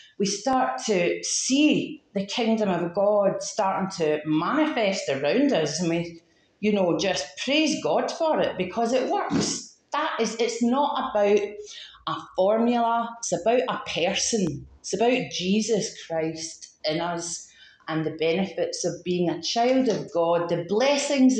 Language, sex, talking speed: English, female, 150 wpm